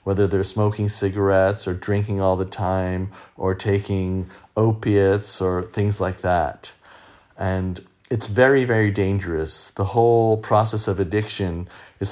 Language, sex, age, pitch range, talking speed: English, male, 40-59, 95-105 Hz, 135 wpm